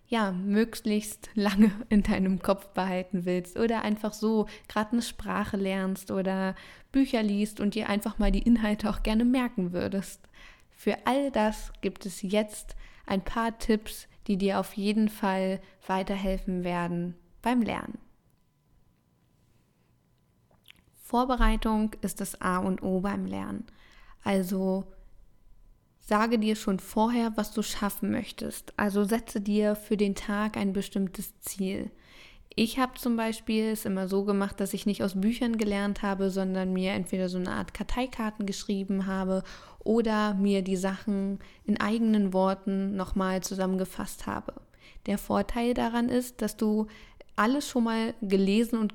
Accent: German